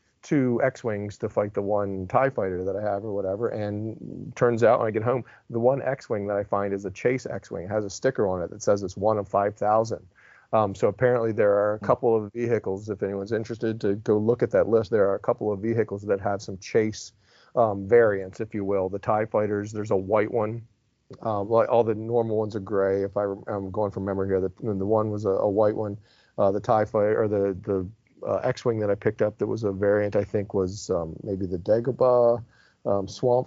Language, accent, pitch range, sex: English, American, 100-115 Hz, male